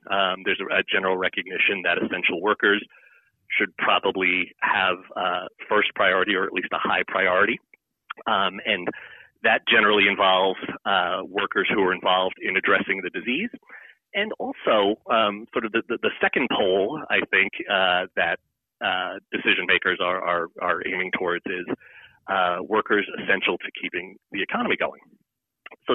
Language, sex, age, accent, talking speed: English, male, 30-49, American, 155 wpm